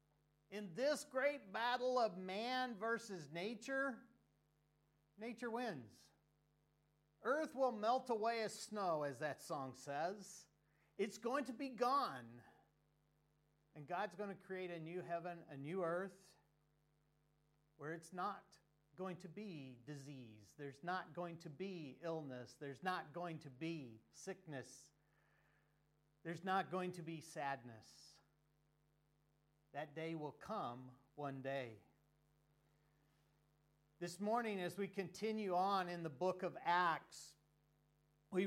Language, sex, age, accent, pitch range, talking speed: English, male, 50-69, American, 150-205 Hz, 125 wpm